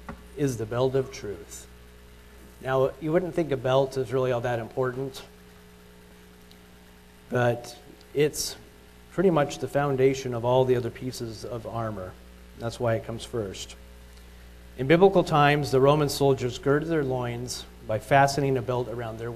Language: English